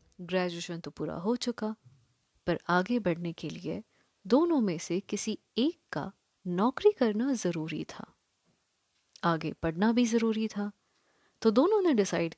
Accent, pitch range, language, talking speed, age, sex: Indian, 175-255 Hz, English, 140 wpm, 20-39, female